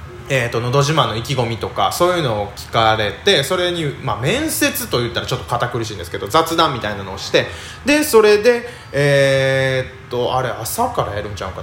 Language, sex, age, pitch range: Japanese, male, 20-39, 115-175 Hz